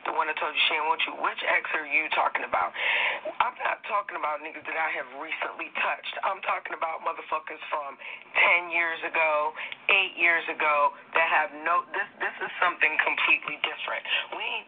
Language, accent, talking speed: English, American, 190 wpm